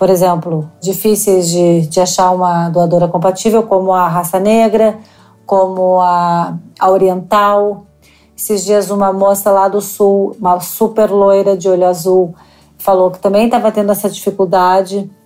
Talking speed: 145 wpm